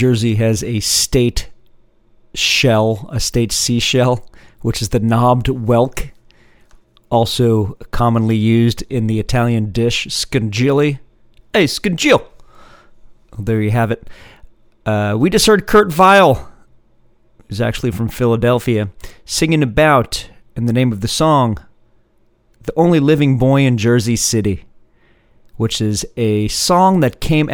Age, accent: 40-59, American